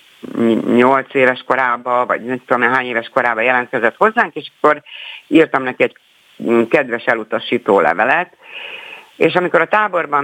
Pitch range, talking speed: 120-150 Hz, 135 wpm